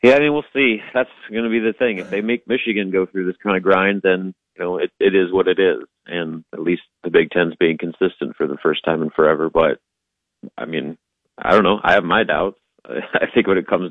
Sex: male